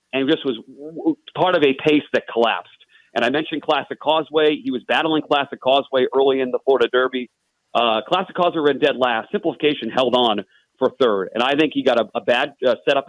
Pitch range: 125-155 Hz